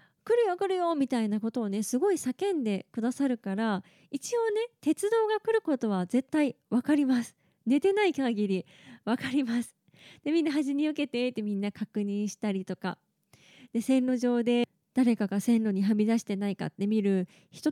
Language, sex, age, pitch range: Japanese, female, 20-39, 220-315 Hz